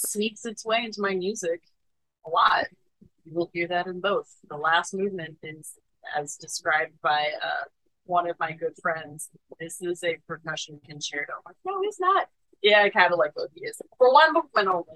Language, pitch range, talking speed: English, 155-190 Hz, 195 wpm